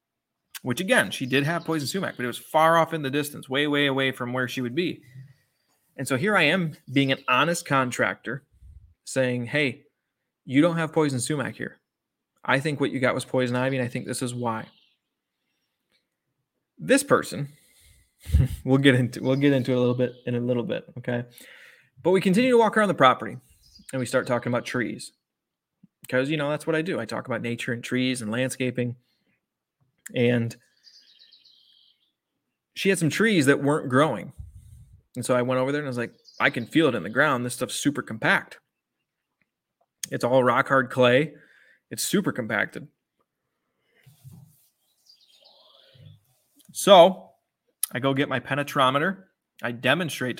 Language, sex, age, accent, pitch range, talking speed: English, male, 20-39, American, 125-145 Hz, 175 wpm